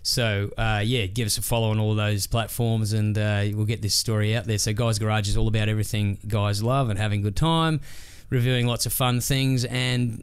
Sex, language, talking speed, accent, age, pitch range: male, English, 230 wpm, Australian, 20-39, 105-125 Hz